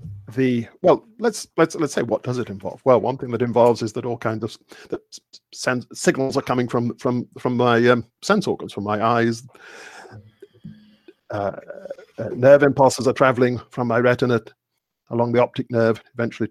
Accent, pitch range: British, 115-130 Hz